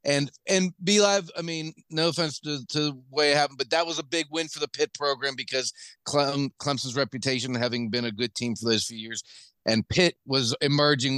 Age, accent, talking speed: 40-59, American, 220 wpm